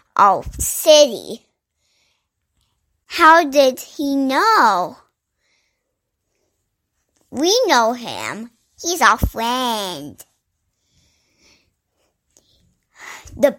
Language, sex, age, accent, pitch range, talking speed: English, male, 20-39, American, 225-290 Hz, 55 wpm